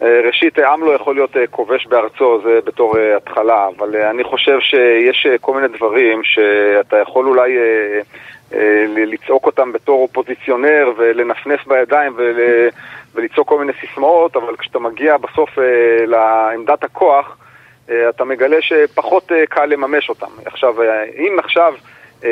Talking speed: 120 wpm